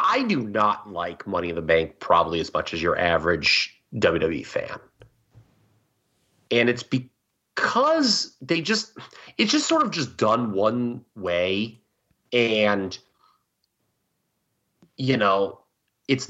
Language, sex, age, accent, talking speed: English, male, 30-49, American, 120 wpm